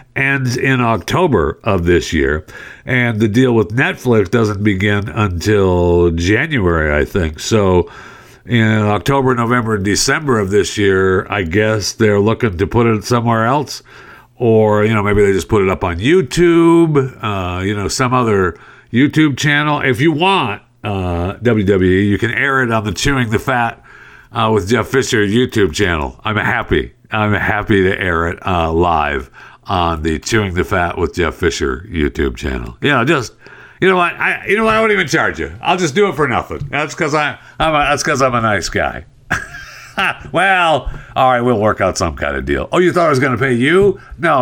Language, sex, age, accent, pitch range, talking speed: English, male, 60-79, American, 100-140 Hz, 195 wpm